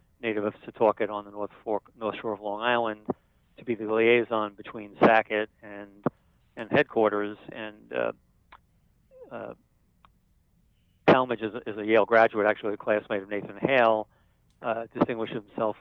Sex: male